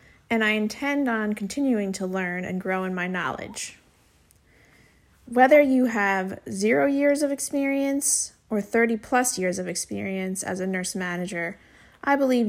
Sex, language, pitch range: female, English, 195-255 Hz